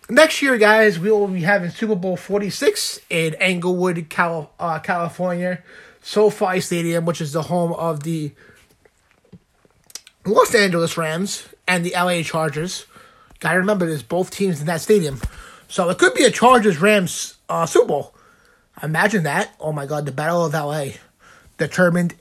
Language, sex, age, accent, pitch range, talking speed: English, male, 30-49, American, 160-220 Hz, 155 wpm